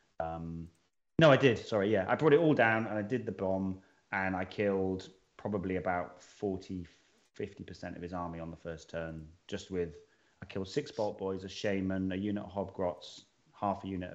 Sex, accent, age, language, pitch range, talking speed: male, British, 30-49, English, 90-100 Hz, 190 wpm